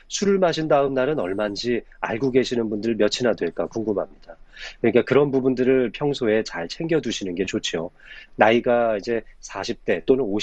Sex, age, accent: male, 30-49, native